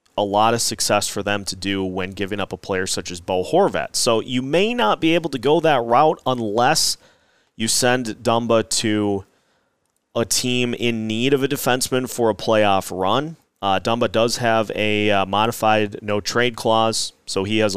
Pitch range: 100-125 Hz